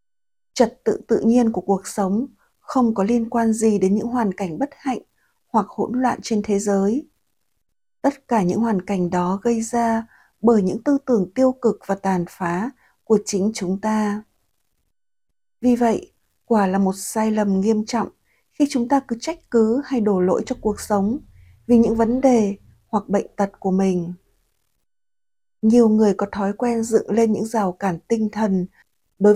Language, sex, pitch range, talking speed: Vietnamese, female, 205-250 Hz, 180 wpm